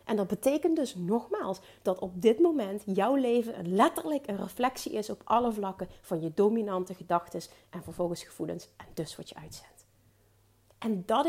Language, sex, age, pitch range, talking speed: Dutch, female, 40-59, 185-245 Hz, 170 wpm